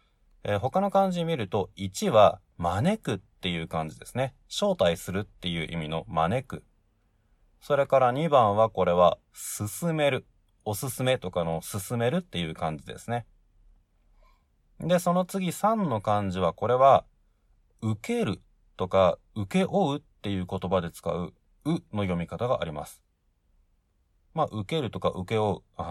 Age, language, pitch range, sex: 30-49, Japanese, 90-140 Hz, male